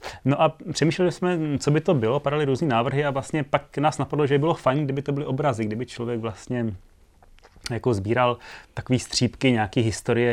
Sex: male